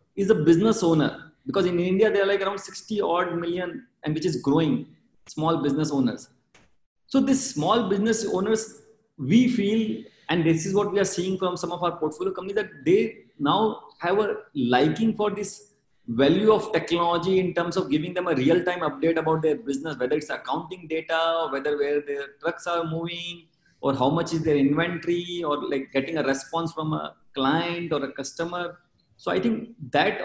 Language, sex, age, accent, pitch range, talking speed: English, male, 30-49, Indian, 150-195 Hz, 190 wpm